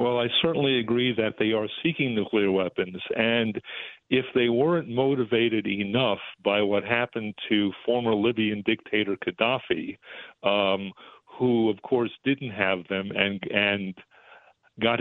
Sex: male